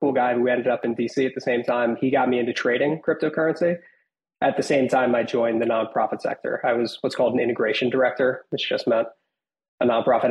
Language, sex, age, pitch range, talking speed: English, male, 20-39, 115-140 Hz, 220 wpm